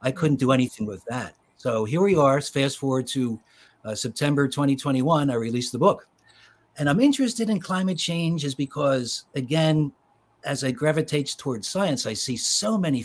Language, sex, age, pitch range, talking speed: English, male, 60-79, 120-160 Hz, 175 wpm